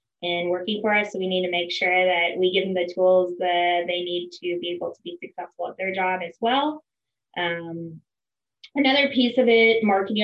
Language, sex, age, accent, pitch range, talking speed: English, female, 20-39, American, 175-210 Hz, 210 wpm